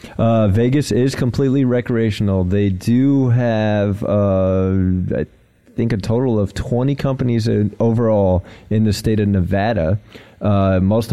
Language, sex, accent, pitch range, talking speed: English, male, American, 95-115 Hz, 130 wpm